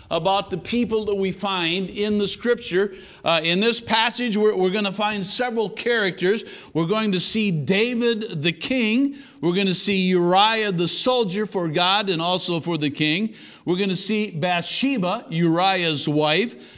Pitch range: 155-200 Hz